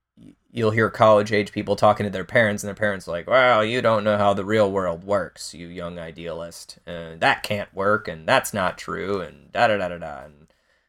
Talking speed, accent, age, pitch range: 215 wpm, American, 20-39, 100-115 Hz